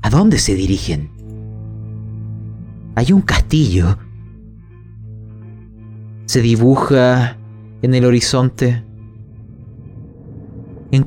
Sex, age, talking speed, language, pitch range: male, 30-49, 70 wpm, Spanish, 110-140 Hz